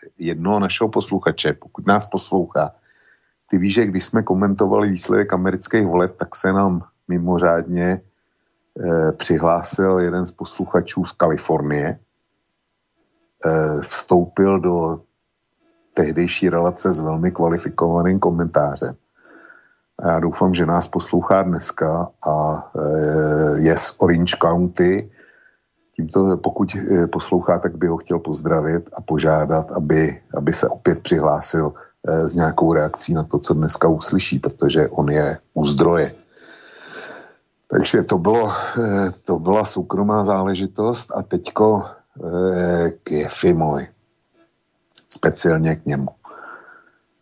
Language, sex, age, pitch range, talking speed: Slovak, male, 50-69, 80-95 Hz, 120 wpm